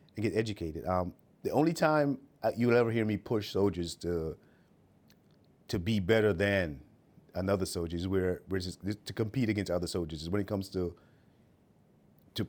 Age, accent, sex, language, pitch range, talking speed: 30-49, American, male, English, 85-105 Hz, 170 wpm